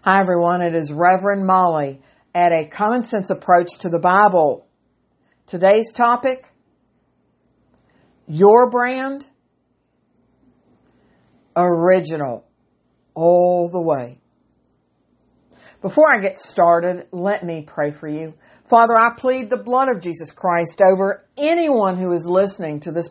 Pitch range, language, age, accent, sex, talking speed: 170-225 Hz, English, 60-79, American, female, 120 wpm